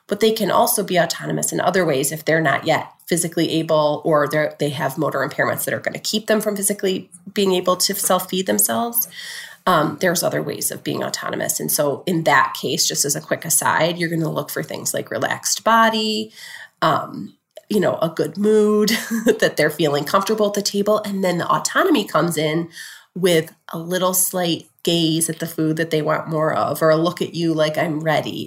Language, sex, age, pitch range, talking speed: English, female, 30-49, 160-220 Hz, 210 wpm